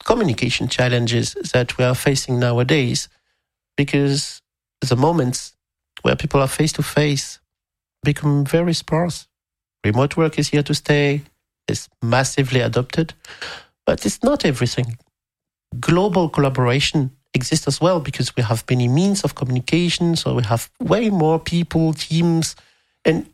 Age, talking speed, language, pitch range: 50-69, 130 wpm, English, 125-160 Hz